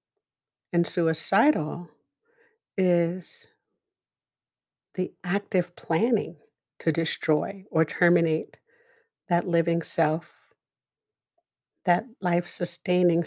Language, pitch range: English, 180-220 Hz